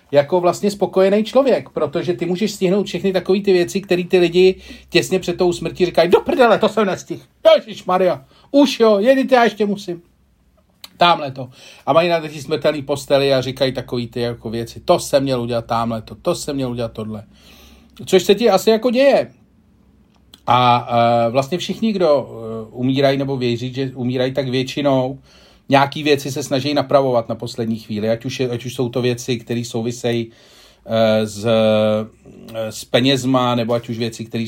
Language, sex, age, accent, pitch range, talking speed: Czech, male, 40-59, native, 120-165 Hz, 175 wpm